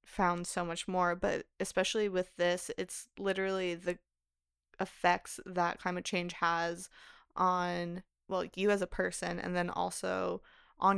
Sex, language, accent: female, English, American